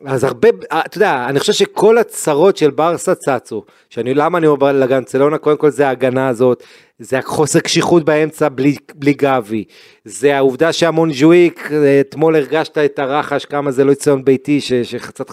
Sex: male